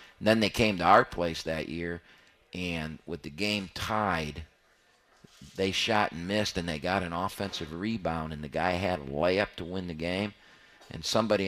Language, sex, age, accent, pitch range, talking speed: English, male, 40-59, American, 85-100 Hz, 185 wpm